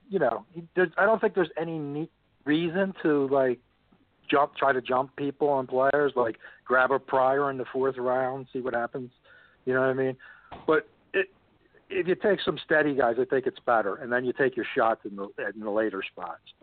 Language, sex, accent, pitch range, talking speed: English, male, American, 130-185 Hz, 210 wpm